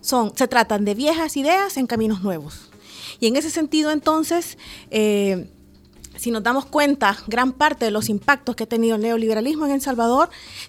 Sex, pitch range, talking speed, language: female, 210-275 Hz, 180 wpm, Spanish